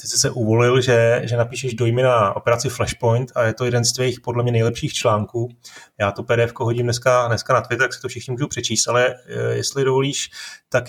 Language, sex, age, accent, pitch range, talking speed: Czech, male, 30-49, native, 115-140 Hz, 210 wpm